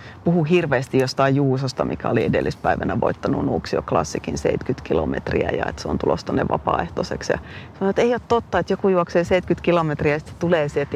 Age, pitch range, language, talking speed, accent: 30-49, 140-175 Hz, Finnish, 175 wpm, native